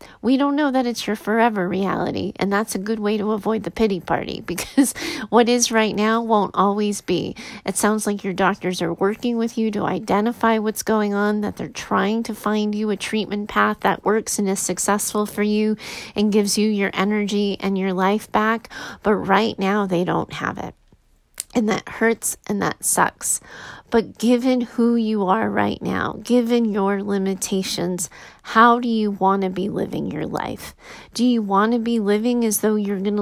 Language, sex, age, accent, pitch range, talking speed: English, female, 30-49, American, 200-225 Hz, 195 wpm